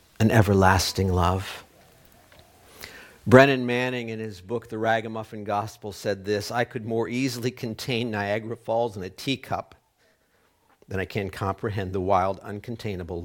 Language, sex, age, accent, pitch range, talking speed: English, male, 50-69, American, 95-115 Hz, 135 wpm